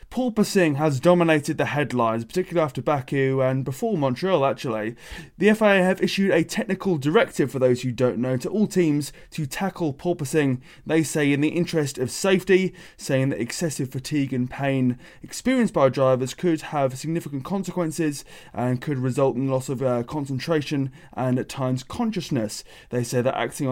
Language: English